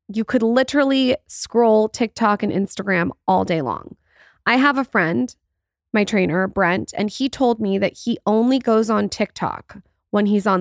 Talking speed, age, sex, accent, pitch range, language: 170 wpm, 20-39, female, American, 195-235 Hz, English